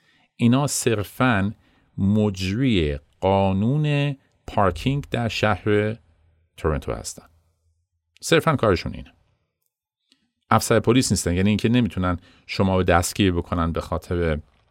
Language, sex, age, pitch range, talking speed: Persian, male, 50-69, 85-120 Hz, 100 wpm